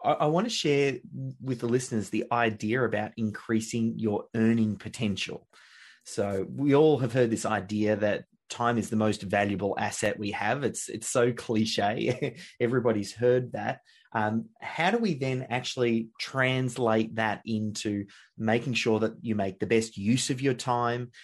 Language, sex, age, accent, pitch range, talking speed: English, male, 30-49, Australian, 110-130 Hz, 160 wpm